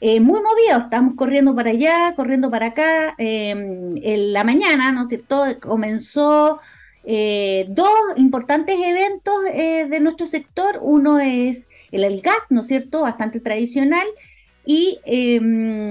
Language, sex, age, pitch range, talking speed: Spanish, female, 30-49, 215-295 Hz, 145 wpm